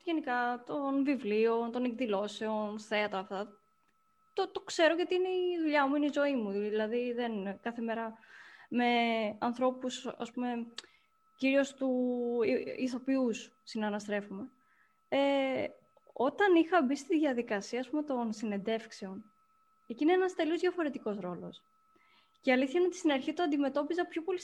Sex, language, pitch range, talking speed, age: female, Greek, 235-315 Hz, 140 wpm, 20-39